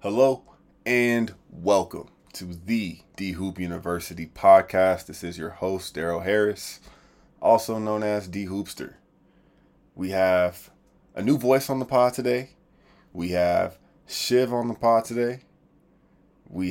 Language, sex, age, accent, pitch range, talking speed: English, male, 20-39, American, 90-115 Hz, 125 wpm